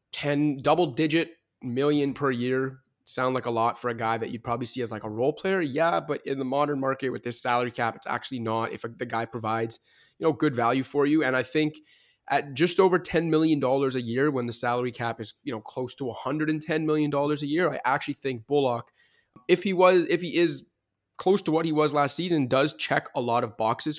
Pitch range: 120-150 Hz